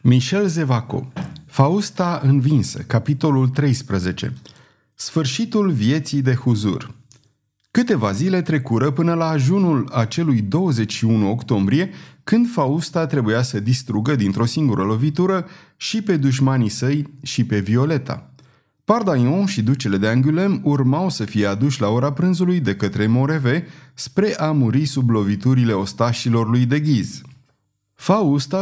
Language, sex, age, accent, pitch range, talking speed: Romanian, male, 30-49, native, 115-160 Hz, 125 wpm